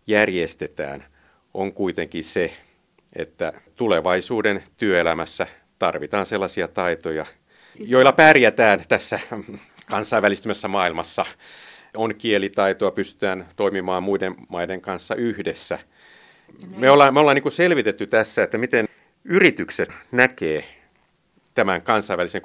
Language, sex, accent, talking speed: Finnish, male, native, 95 wpm